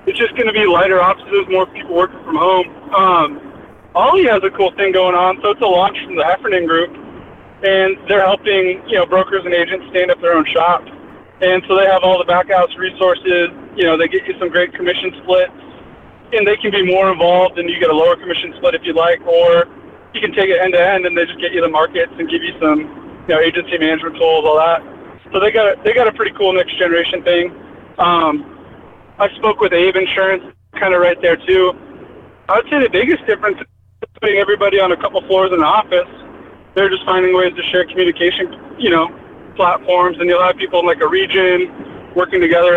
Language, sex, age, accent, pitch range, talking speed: English, male, 20-39, American, 175-200 Hz, 225 wpm